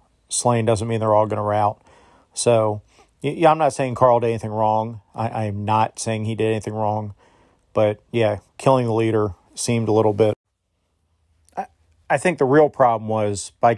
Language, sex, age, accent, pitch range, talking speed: English, male, 40-59, American, 105-120 Hz, 185 wpm